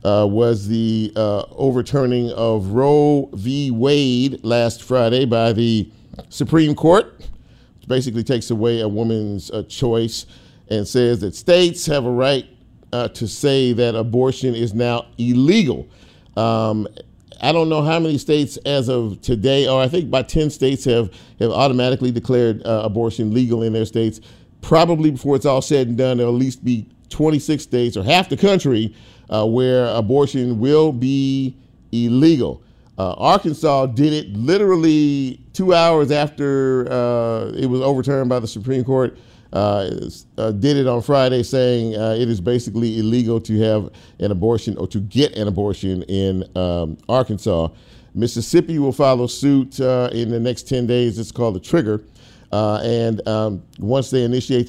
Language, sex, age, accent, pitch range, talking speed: English, male, 50-69, American, 115-135 Hz, 160 wpm